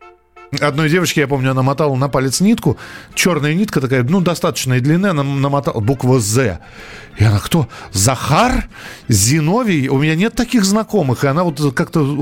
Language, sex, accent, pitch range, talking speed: Russian, male, native, 125-180 Hz, 160 wpm